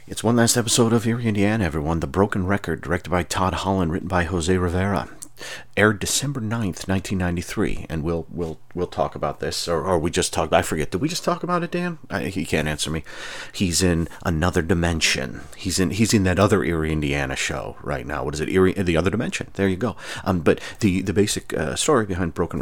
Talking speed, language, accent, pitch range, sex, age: 225 wpm, English, American, 80-105 Hz, male, 40-59